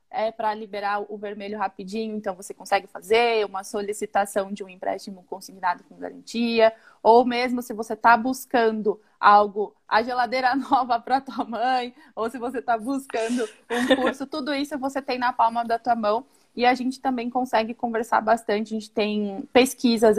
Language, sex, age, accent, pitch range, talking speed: Portuguese, female, 20-39, Brazilian, 210-245 Hz, 170 wpm